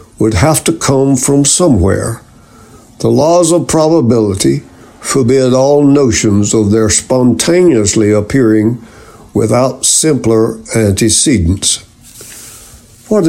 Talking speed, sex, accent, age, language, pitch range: 95 wpm, male, American, 60-79, English, 110-145 Hz